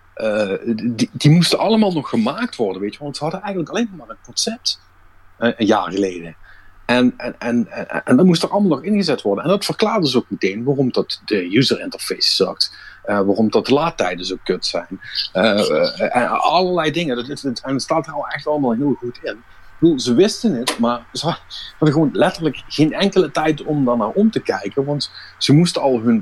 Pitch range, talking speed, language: 105-155 Hz, 220 wpm, Dutch